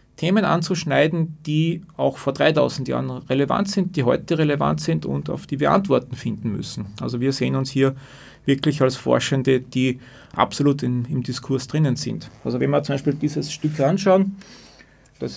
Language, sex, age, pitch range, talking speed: German, male, 30-49, 135-165 Hz, 170 wpm